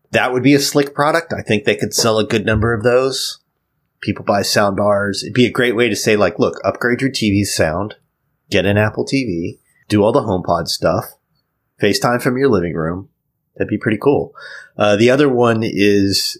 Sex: male